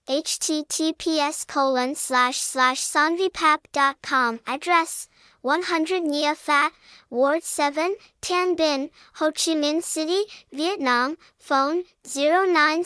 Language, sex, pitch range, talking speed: English, male, 275-330 Hz, 90 wpm